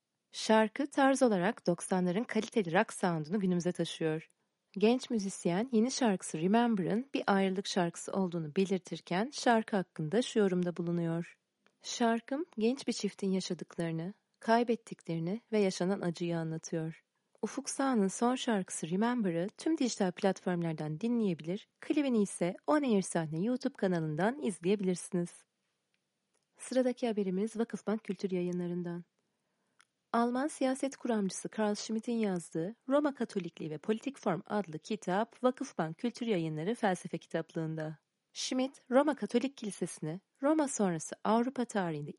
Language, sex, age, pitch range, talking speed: Turkish, female, 30-49, 175-235 Hz, 115 wpm